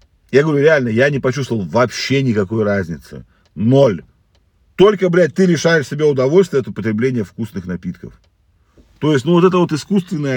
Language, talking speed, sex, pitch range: Russian, 155 wpm, male, 105-155 Hz